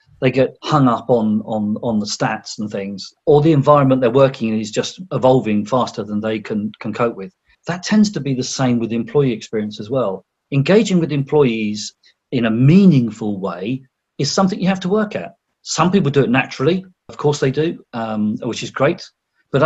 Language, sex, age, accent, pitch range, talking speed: English, male, 40-59, British, 110-150 Hz, 200 wpm